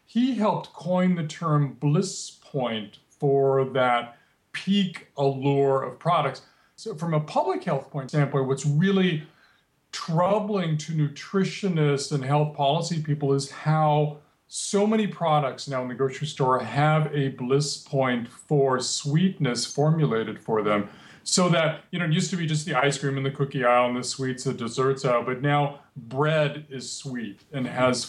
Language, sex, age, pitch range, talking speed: English, male, 40-59, 130-160 Hz, 165 wpm